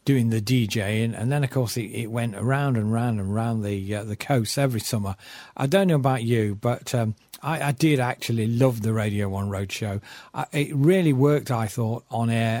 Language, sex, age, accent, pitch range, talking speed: English, male, 40-59, British, 110-135 Hz, 210 wpm